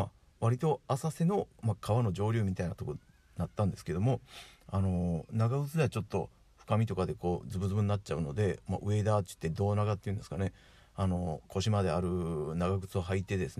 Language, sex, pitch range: Japanese, male, 85-115 Hz